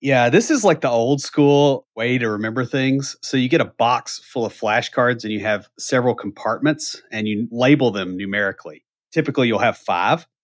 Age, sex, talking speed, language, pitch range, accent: 30-49, male, 190 wpm, English, 110-135 Hz, American